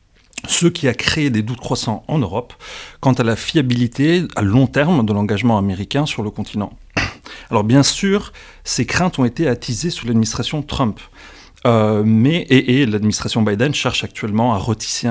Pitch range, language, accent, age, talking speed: 105-130 Hz, French, French, 40-59, 170 wpm